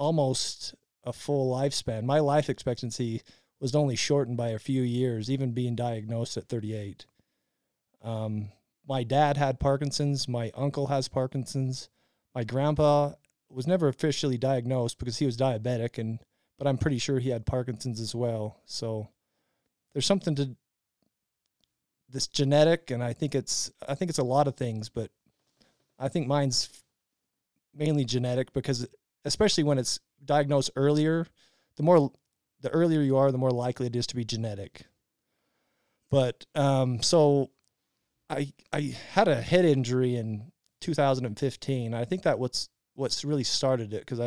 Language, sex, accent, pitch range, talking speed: English, male, American, 115-140 Hz, 150 wpm